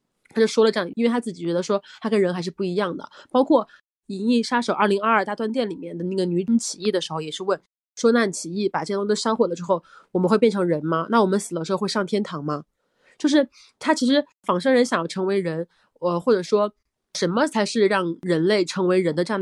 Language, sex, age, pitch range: Chinese, female, 20-39, 175-215 Hz